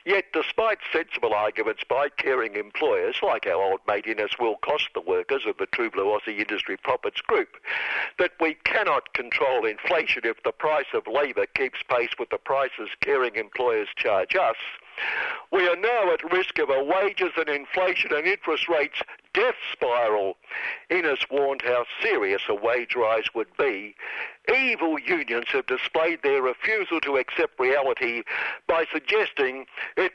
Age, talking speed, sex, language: 60-79, 155 wpm, male, English